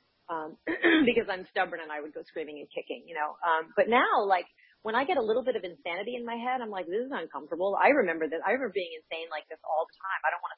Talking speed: 280 wpm